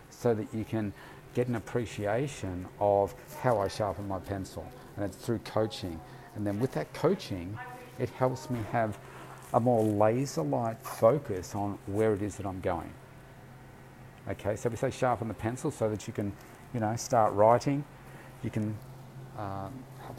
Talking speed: 165 wpm